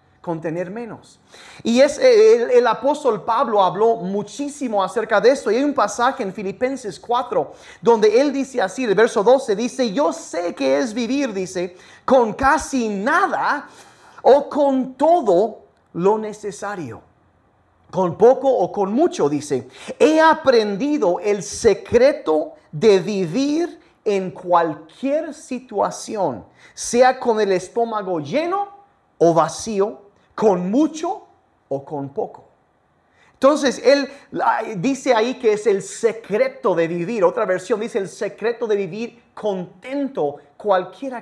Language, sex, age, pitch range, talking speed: Spanish, male, 40-59, 195-280 Hz, 130 wpm